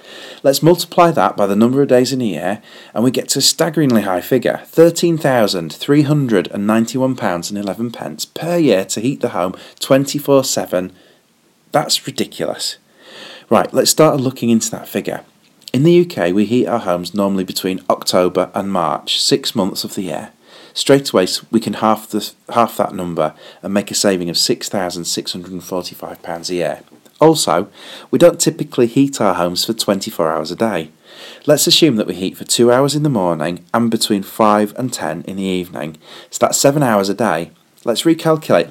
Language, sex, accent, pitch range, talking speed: English, male, British, 95-140 Hz, 165 wpm